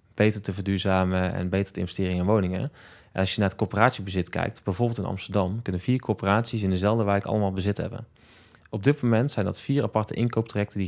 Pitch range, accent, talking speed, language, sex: 100-120 Hz, Dutch, 200 wpm, Dutch, male